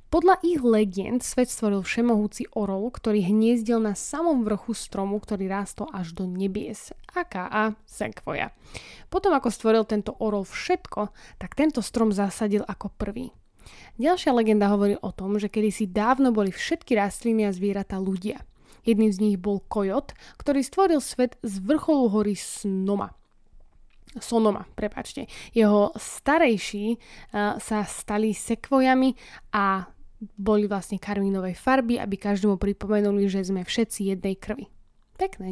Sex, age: female, 20-39